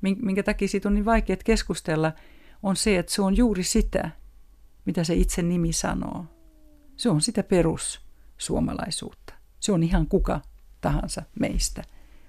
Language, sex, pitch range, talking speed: Finnish, female, 170-205 Hz, 140 wpm